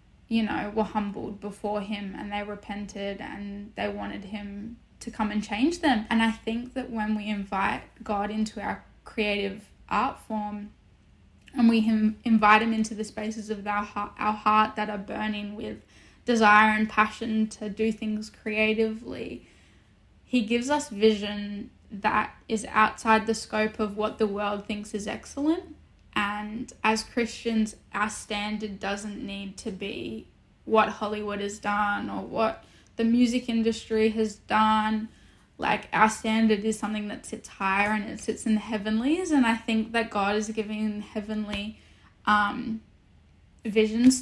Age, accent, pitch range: 10-29, Australian, 205-225 Hz